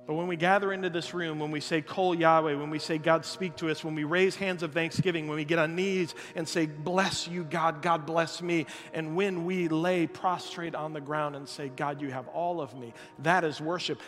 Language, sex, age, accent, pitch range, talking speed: English, male, 40-59, American, 150-190 Hz, 245 wpm